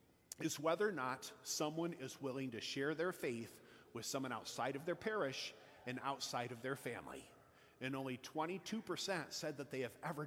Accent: American